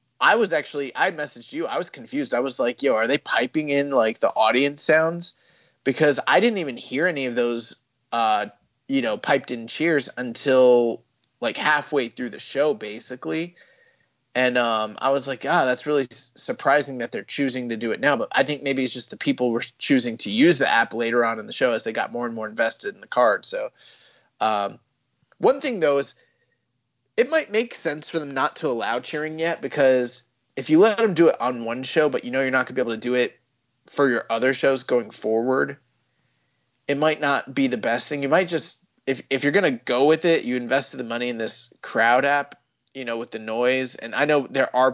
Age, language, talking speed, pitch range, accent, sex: 20-39, English, 220 wpm, 120-150 Hz, American, male